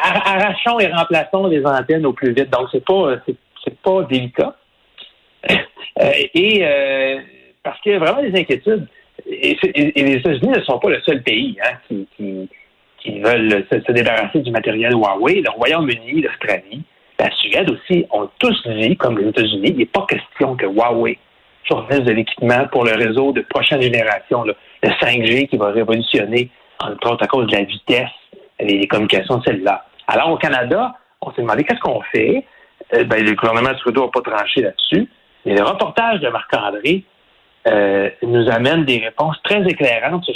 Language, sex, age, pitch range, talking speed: French, male, 60-79, 120-180 Hz, 185 wpm